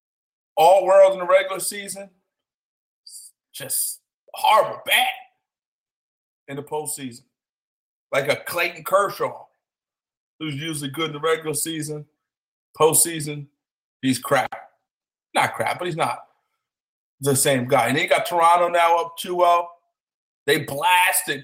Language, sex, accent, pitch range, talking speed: English, male, American, 145-175 Hz, 120 wpm